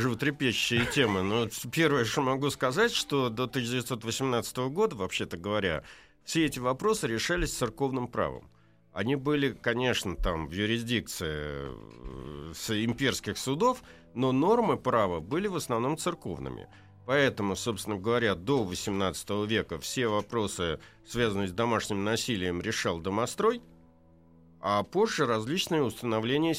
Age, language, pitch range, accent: 50-69, Russian, 95-140 Hz, native